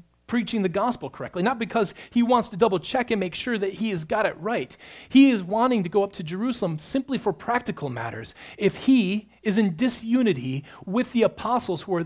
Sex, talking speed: male, 205 wpm